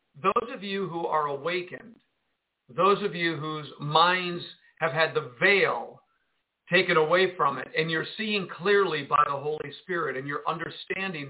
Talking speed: 160 wpm